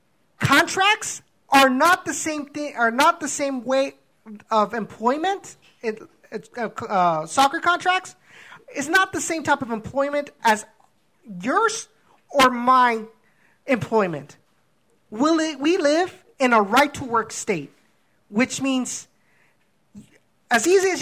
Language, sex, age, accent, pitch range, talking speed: English, male, 30-49, American, 215-280 Hz, 120 wpm